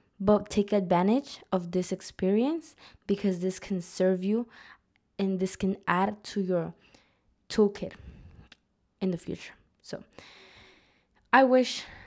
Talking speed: 120 wpm